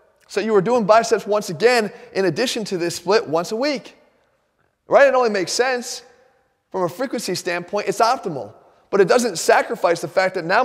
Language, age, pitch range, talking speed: English, 30-49, 170-235 Hz, 190 wpm